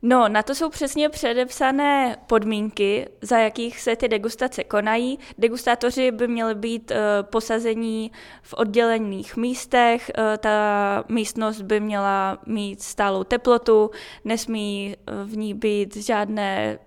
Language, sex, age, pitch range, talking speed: Czech, female, 10-29, 210-230 Hz, 115 wpm